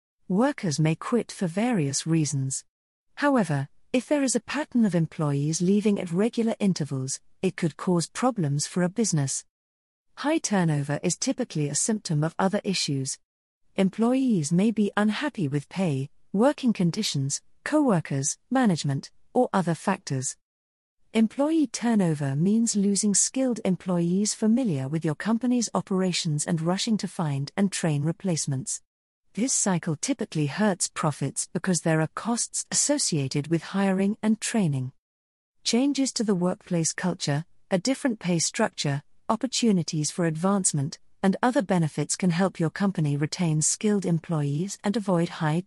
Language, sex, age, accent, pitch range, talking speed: English, female, 40-59, British, 150-220 Hz, 140 wpm